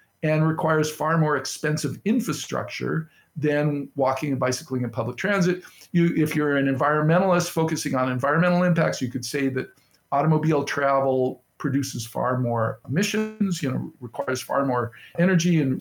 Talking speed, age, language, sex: 150 wpm, 50-69, English, male